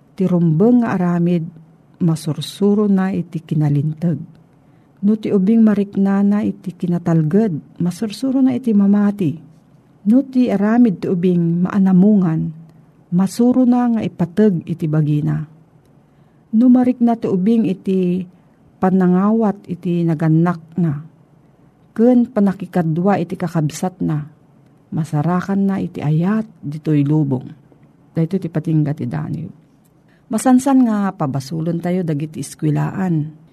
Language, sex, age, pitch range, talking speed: Filipino, female, 50-69, 155-200 Hz, 105 wpm